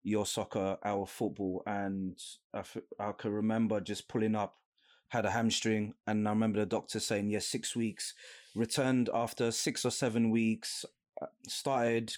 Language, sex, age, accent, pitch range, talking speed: English, male, 20-39, British, 110-120 Hz, 155 wpm